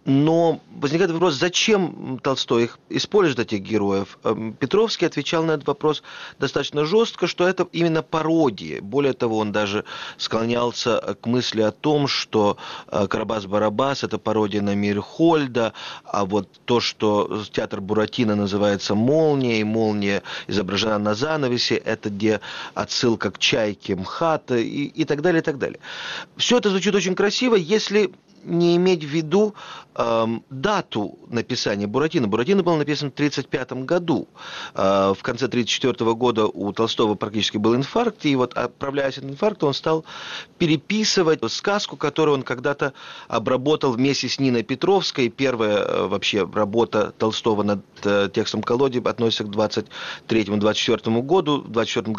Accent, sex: native, male